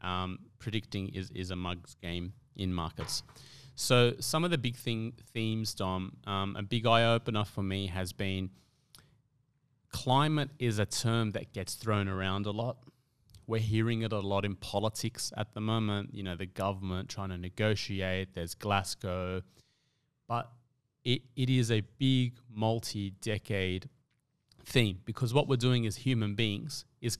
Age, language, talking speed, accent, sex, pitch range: 30-49, English, 155 wpm, Australian, male, 100-120 Hz